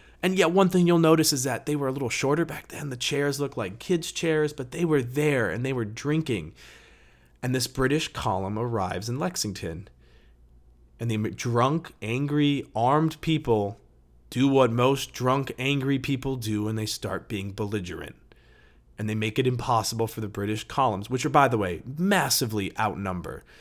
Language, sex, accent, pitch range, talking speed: English, male, American, 100-135 Hz, 180 wpm